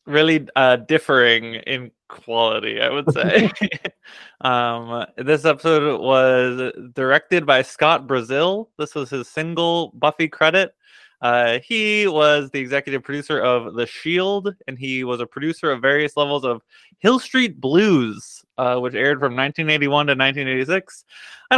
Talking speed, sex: 140 wpm, male